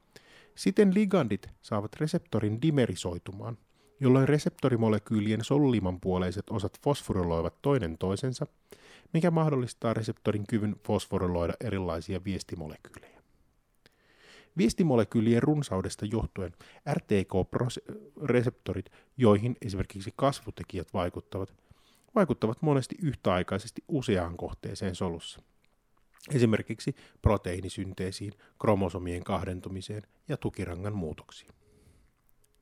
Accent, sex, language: native, male, Finnish